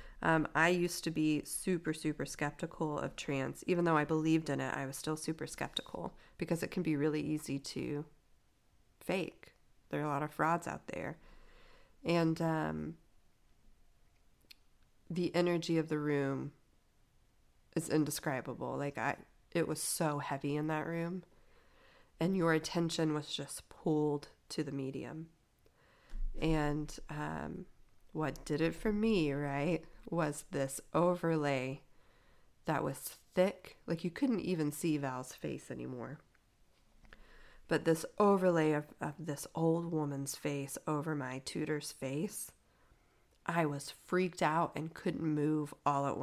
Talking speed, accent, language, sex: 140 wpm, American, English, female